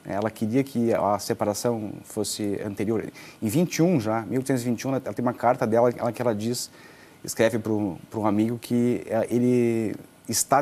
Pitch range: 105-125 Hz